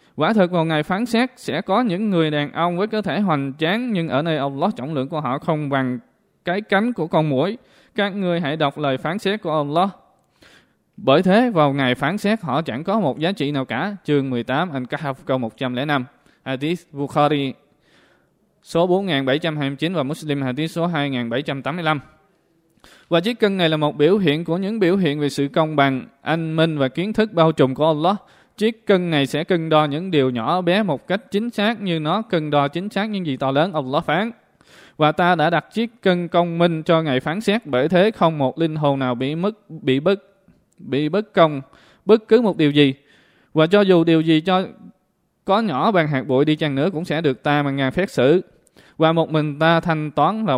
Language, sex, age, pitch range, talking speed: Vietnamese, male, 20-39, 145-190 Hz, 215 wpm